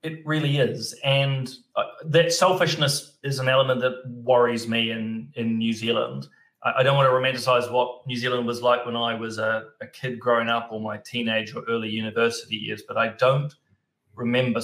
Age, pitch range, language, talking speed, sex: 30-49, 115-135 Hz, English, 195 wpm, male